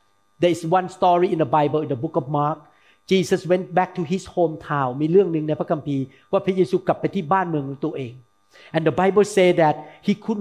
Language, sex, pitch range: Thai, male, 155-220 Hz